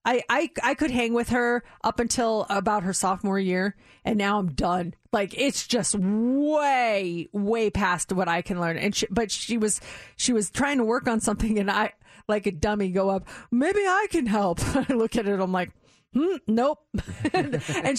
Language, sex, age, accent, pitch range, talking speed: English, female, 30-49, American, 210-310 Hz, 195 wpm